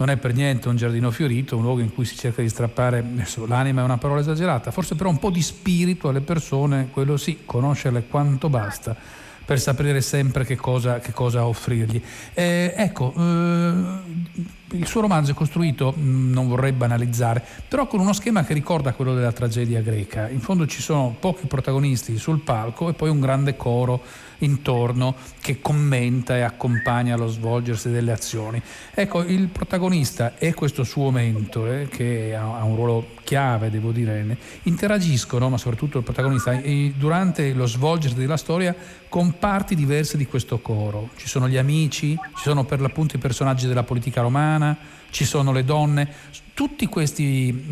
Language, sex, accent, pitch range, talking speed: Italian, male, native, 120-155 Hz, 170 wpm